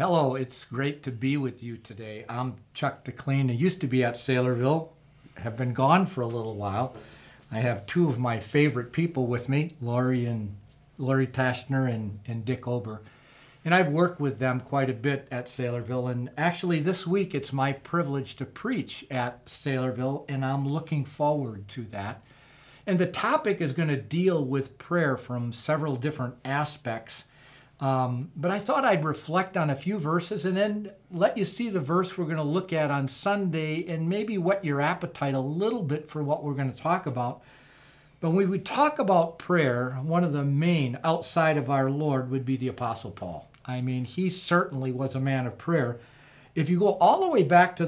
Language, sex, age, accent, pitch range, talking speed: English, male, 50-69, American, 130-165 Hz, 195 wpm